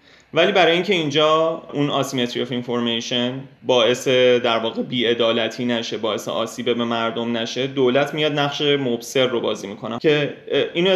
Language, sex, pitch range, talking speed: English, male, 120-150 Hz, 150 wpm